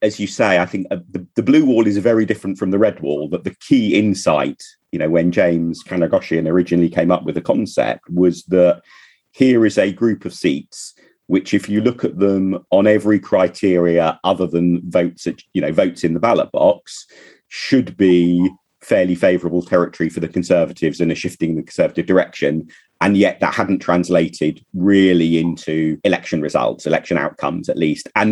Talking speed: 185 wpm